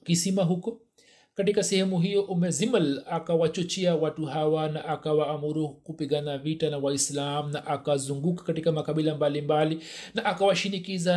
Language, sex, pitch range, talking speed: Swahili, male, 150-185 Hz, 135 wpm